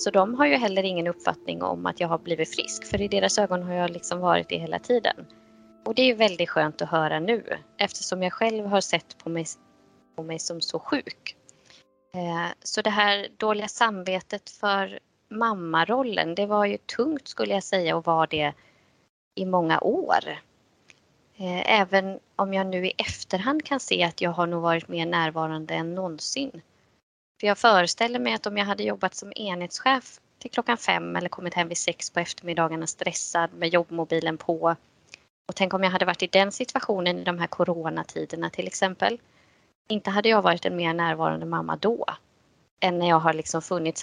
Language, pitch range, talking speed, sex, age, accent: Swedish, 160-200 Hz, 190 wpm, female, 20-39, native